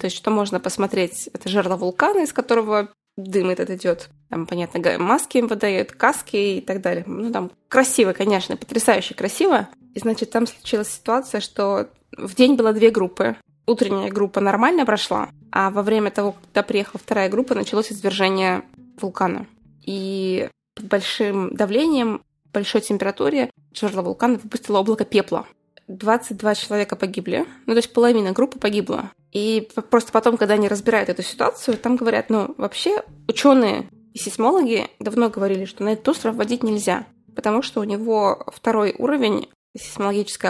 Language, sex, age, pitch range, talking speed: Russian, female, 20-39, 195-235 Hz, 155 wpm